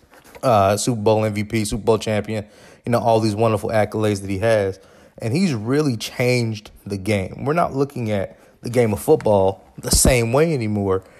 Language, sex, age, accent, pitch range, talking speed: English, male, 30-49, American, 105-130 Hz, 180 wpm